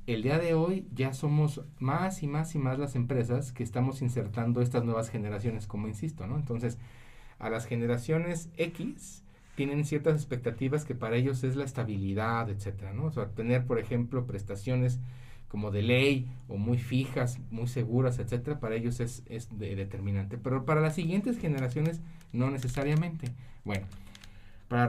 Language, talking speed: Spanish, 165 wpm